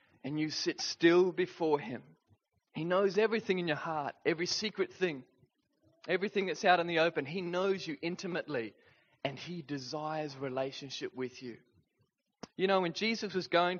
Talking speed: 160 wpm